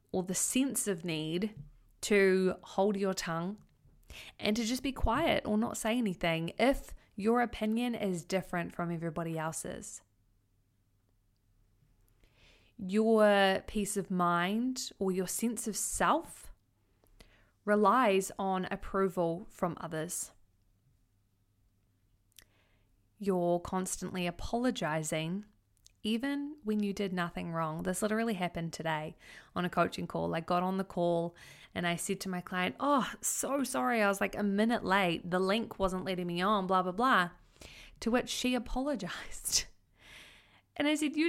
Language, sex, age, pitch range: English, female, 20-39, 165-230 Hz